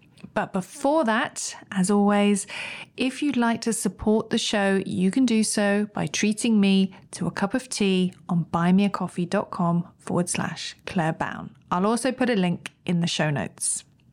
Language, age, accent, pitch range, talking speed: English, 40-59, British, 180-230 Hz, 155 wpm